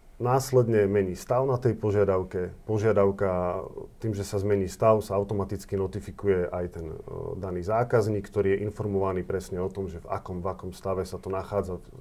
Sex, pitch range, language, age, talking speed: male, 95-110 Hz, Slovak, 40-59, 175 wpm